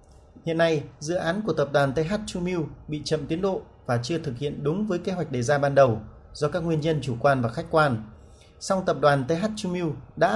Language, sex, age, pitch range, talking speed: Vietnamese, male, 30-49, 135-180 Hz, 220 wpm